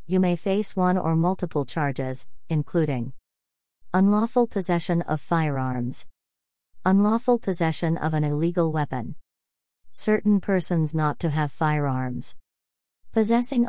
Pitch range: 140-175 Hz